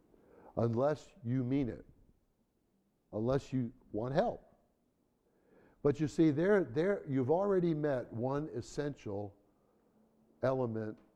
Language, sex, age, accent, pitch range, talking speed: English, male, 60-79, American, 115-160 Hz, 100 wpm